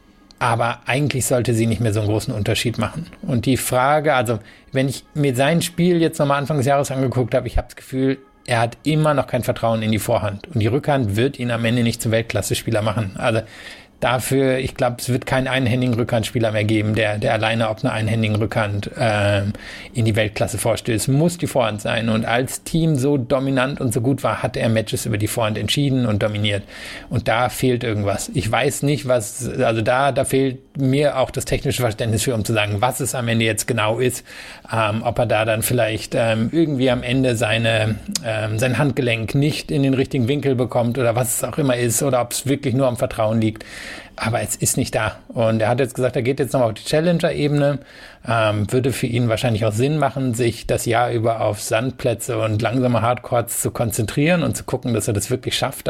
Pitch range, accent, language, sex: 110-135 Hz, German, German, male